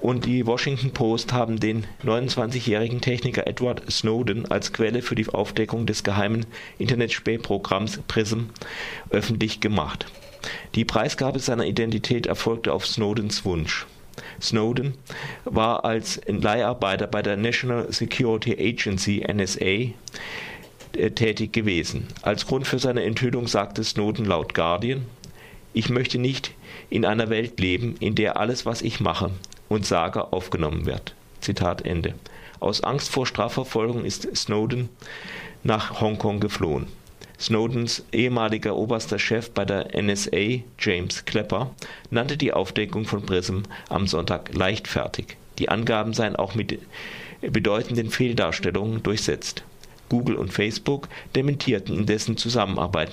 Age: 40-59